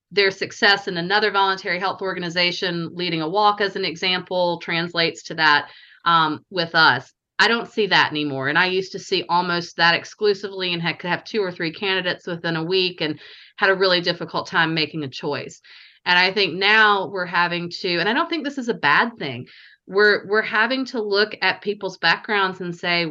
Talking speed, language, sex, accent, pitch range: 205 wpm, English, female, American, 165-195 Hz